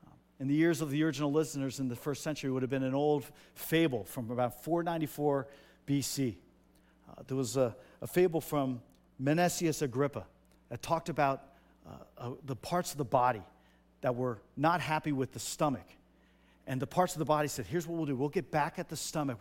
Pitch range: 120-160 Hz